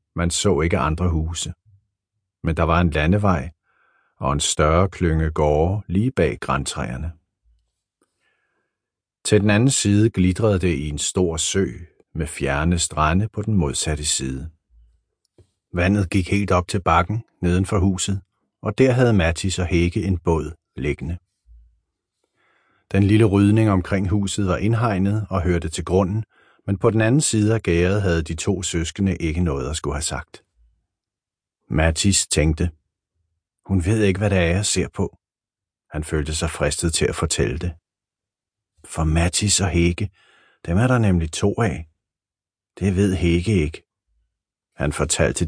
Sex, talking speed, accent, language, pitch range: male, 150 wpm, native, Danish, 80-100 Hz